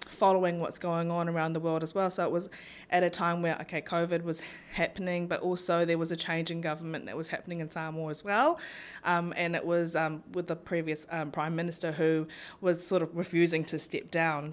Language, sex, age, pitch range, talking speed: English, female, 20-39, 165-185 Hz, 225 wpm